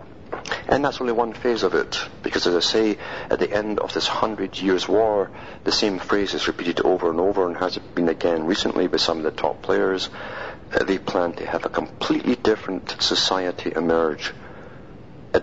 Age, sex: 50-69, male